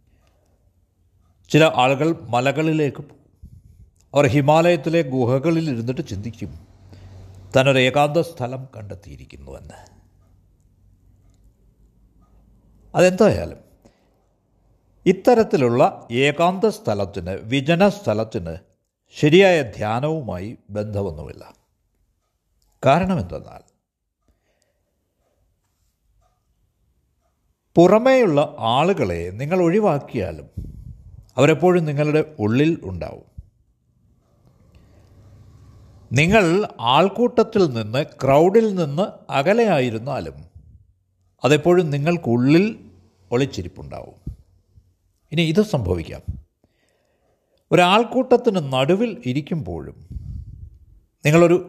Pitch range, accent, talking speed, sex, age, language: 95-160 Hz, native, 55 wpm, male, 60-79, Malayalam